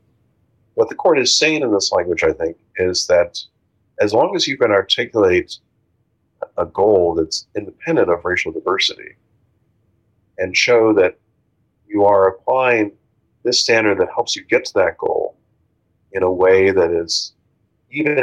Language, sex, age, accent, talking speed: English, male, 40-59, American, 150 wpm